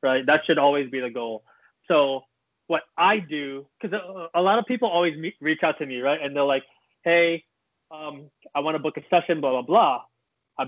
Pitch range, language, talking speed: 145-180 Hz, English, 215 wpm